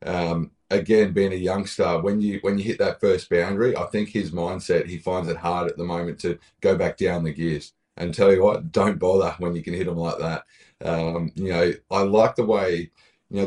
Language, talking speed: English, 230 wpm